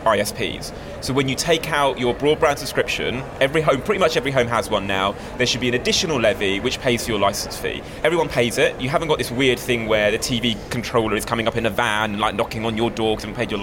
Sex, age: male, 20-39